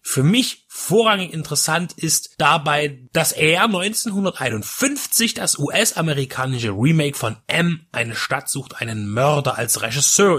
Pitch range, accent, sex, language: 135-190 Hz, German, male, German